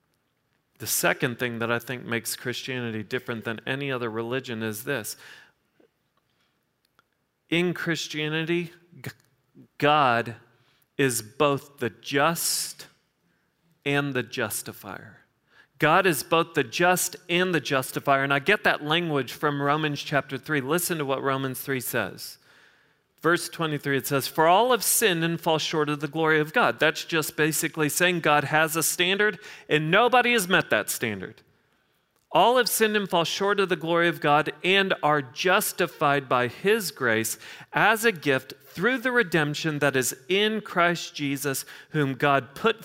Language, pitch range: English, 135-175 Hz